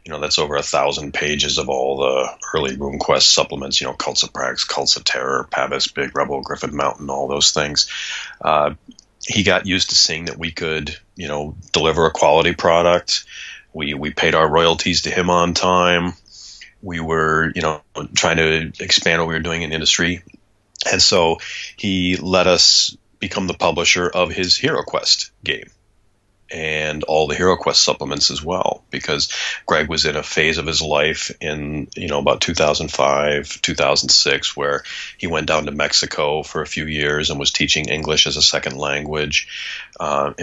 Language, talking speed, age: English, 180 wpm, 30-49